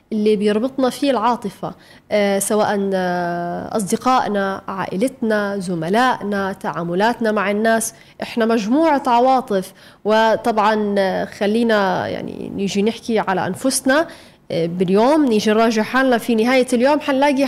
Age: 20-39